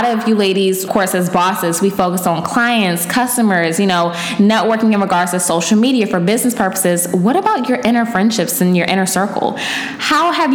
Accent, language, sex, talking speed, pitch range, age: American, English, female, 195 wpm, 175-215 Hz, 10-29